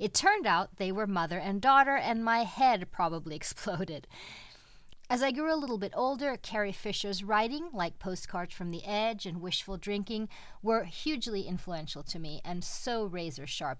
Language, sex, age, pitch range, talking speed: English, female, 40-59, 170-235 Hz, 175 wpm